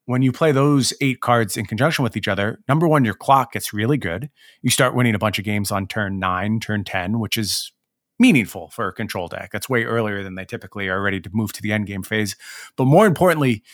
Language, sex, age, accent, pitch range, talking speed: English, male, 30-49, American, 105-135 Hz, 235 wpm